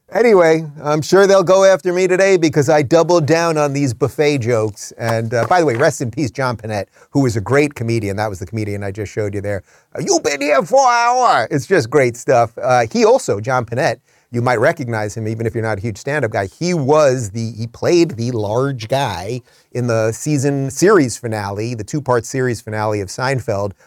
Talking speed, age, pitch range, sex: 220 wpm, 30-49, 110-150 Hz, male